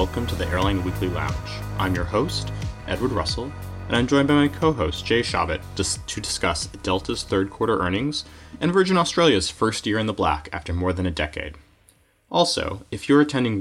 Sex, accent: male, American